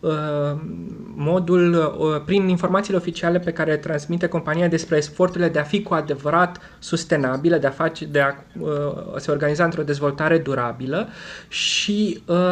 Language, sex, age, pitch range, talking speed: Romanian, male, 20-39, 155-185 Hz, 135 wpm